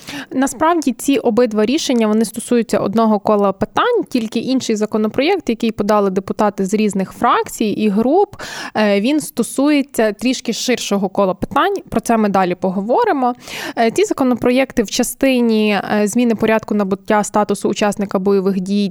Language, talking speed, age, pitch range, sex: Ukrainian, 135 wpm, 20-39, 200-240 Hz, female